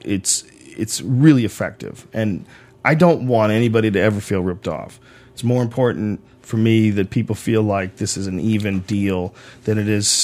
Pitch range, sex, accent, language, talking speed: 100-125 Hz, male, American, English, 180 wpm